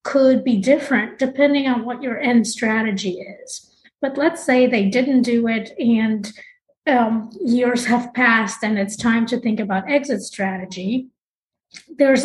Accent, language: American, English